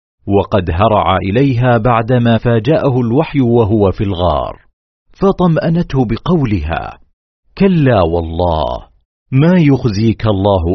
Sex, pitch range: male, 95-135 Hz